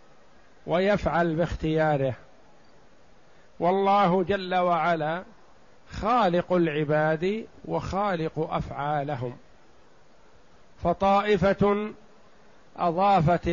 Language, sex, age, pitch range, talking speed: Arabic, male, 50-69, 160-195 Hz, 50 wpm